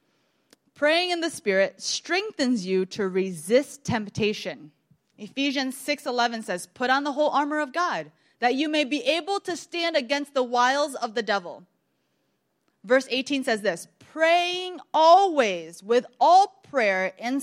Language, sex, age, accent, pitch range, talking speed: English, female, 20-39, American, 205-295 Hz, 145 wpm